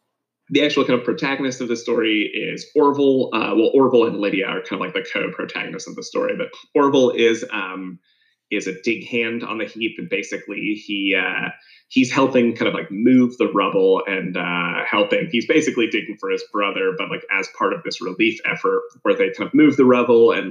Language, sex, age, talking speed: English, male, 20-39, 210 wpm